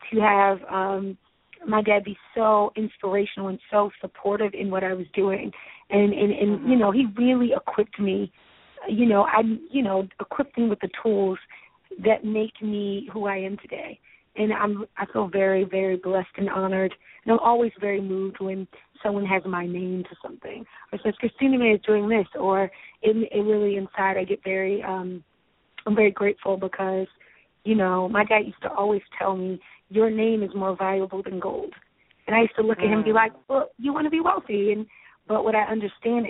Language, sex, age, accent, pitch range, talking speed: English, female, 20-39, American, 190-220 Hz, 200 wpm